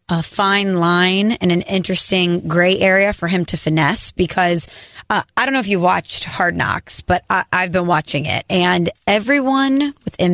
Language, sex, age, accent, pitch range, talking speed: English, female, 30-49, American, 175-195 Hz, 175 wpm